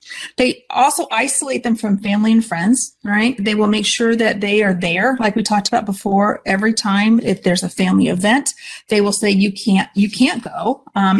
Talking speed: 205 wpm